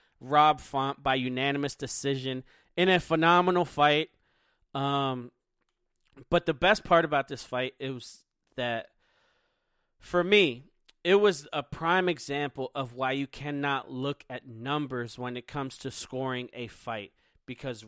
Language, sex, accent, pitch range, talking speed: English, male, American, 125-155 Hz, 140 wpm